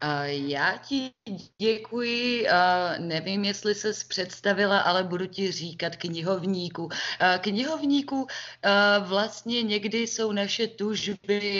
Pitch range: 155-200 Hz